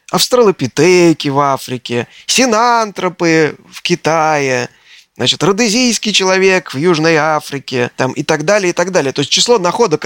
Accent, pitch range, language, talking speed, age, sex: native, 155-210 Hz, Russian, 135 wpm, 20-39, male